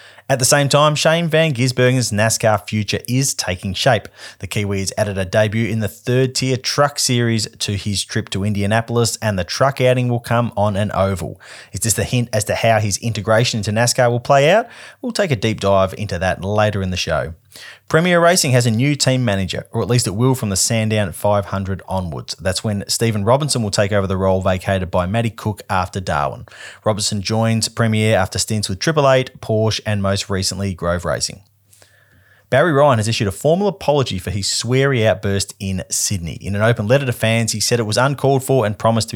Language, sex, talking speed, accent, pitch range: English, male, 210 wpm, Australian, 100-125 Hz